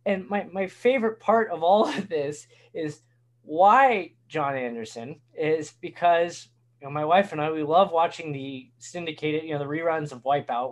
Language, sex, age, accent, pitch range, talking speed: English, male, 20-39, American, 125-195 Hz, 180 wpm